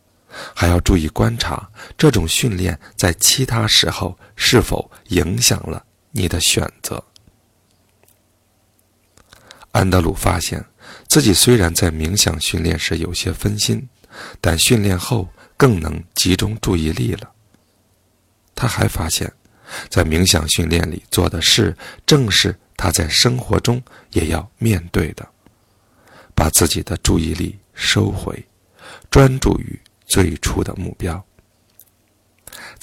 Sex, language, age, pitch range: male, Chinese, 50-69, 90-110 Hz